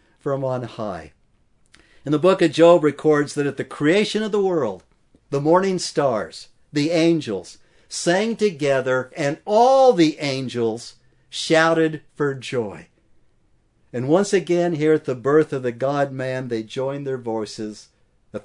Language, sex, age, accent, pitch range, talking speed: English, male, 60-79, American, 125-170 Hz, 145 wpm